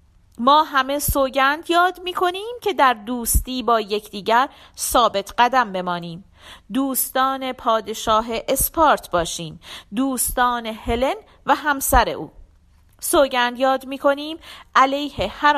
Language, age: Persian, 40-59